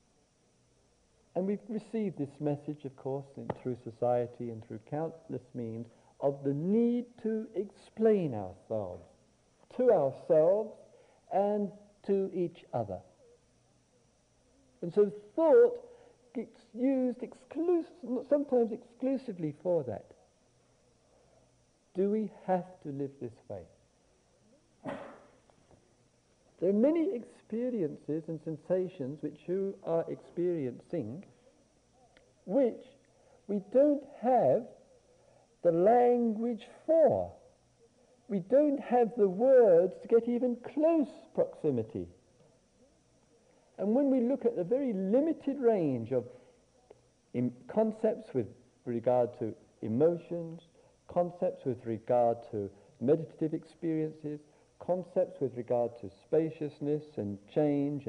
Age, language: 60-79, English